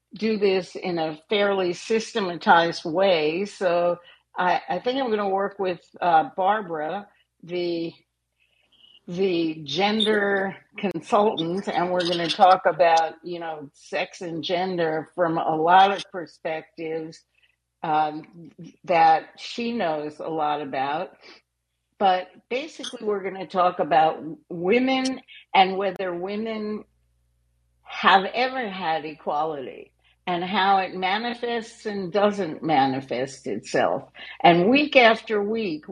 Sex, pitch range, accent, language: female, 165-205 Hz, American, English